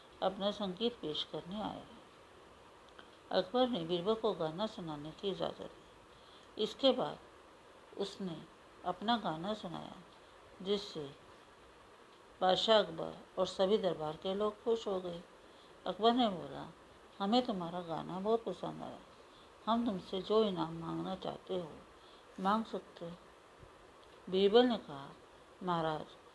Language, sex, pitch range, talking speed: Hindi, female, 180-220 Hz, 125 wpm